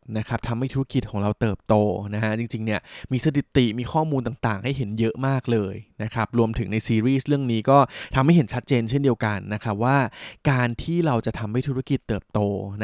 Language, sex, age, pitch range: Thai, male, 20-39, 110-130 Hz